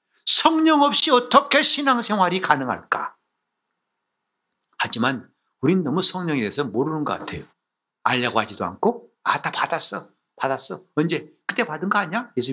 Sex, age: male, 60-79